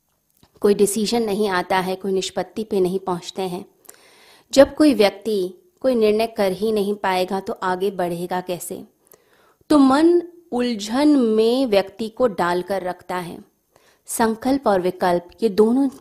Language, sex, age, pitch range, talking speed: Hindi, female, 30-49, 185-240 Hz, 140 wpm